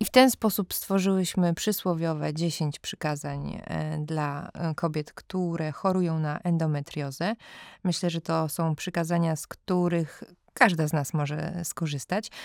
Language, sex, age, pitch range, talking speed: Polish, female, 20-39, 155-180 Hz, 125 wpm